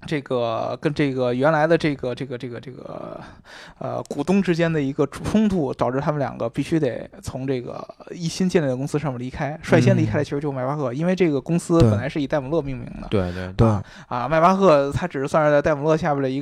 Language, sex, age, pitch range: Chinese, male, 20-39, 125-165 Hz